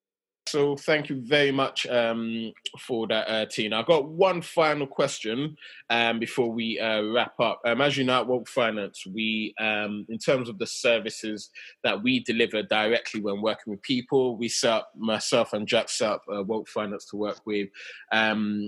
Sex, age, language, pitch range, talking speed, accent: male, 20-39, English, 105-125 Hz, 185 wpm, British